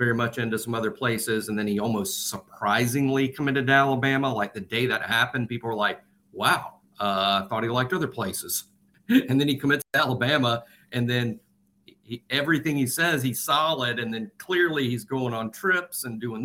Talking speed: 195 wpm